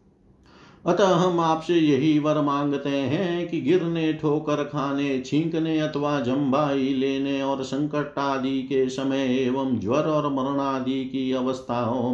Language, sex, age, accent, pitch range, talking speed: Hindi, male, 50-69, native, 125-150 Hz, 135 wpm